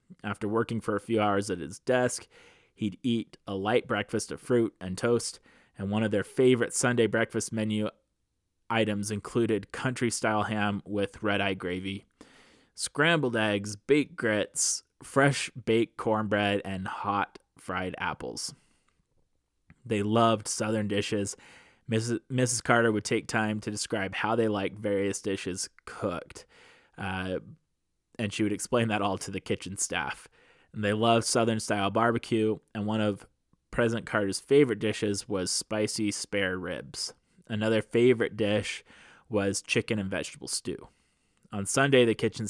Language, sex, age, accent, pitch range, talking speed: English, male, 20-39, American, 100-115 Hz, 140 wpm